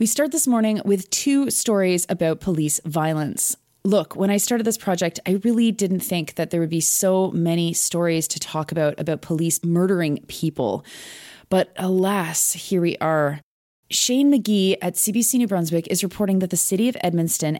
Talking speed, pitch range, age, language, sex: 175 wpm, 160-200 Hz, 20-39, English, female